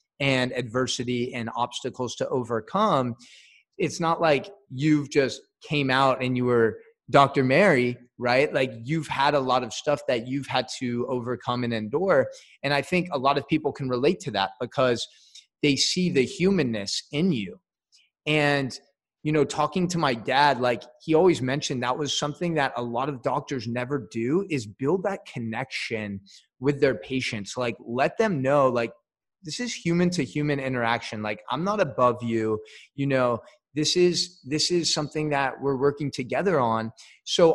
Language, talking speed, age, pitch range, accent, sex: English, 175 wpm, 20-39, 120-150 Hz, American, male